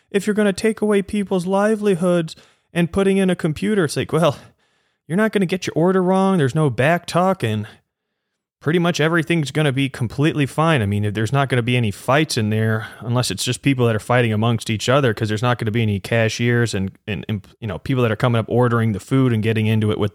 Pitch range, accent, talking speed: 105-140 Hz, American, 250 wpm